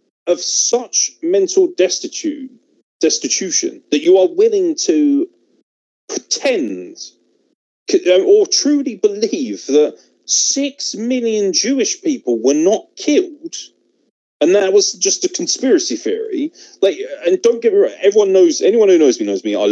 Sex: male